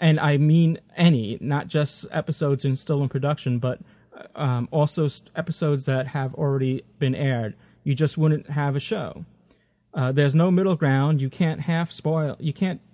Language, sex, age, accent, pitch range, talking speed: English, male, 30-49, American, 135-165 Hz, 175 wpm